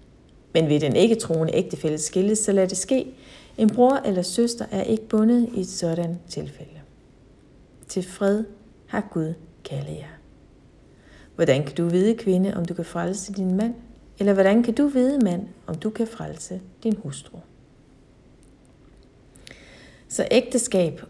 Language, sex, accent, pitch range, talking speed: Danish, female, native, 165-215 Hz, 150 wpm